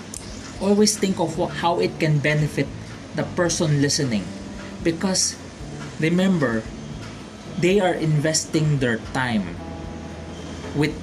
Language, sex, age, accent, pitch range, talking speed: English, male, 20-39, Filipino, 125-170 Hz, 100 wpm